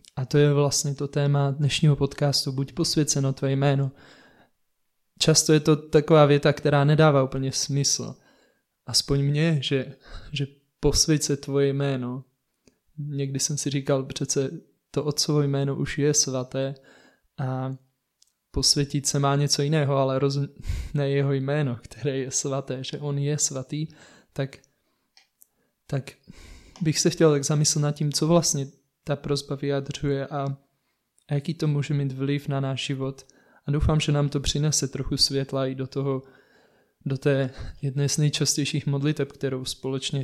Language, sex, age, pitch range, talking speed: Czech, male, 20-39, 135-150 Hz, 150 wpm